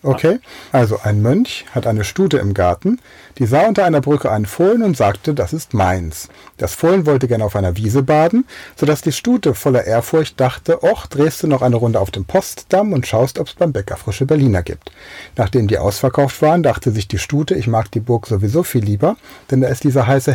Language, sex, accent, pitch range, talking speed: German, male, German, 110-160 Hz, 215 wpm